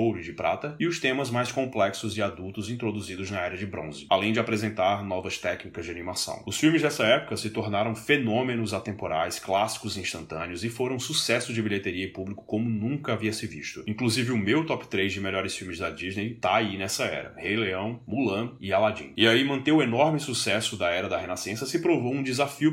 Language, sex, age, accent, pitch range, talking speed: Portuguese, male, 20-39, Brazilian, 105-125 Hz, 200 wpm